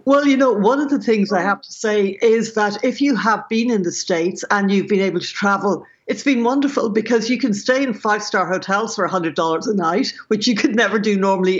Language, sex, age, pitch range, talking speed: English, female, 60-79, 195-230 Hz, 240 wpm